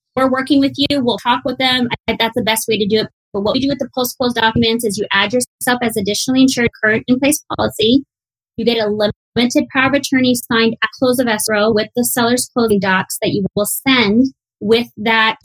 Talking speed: 220 wpm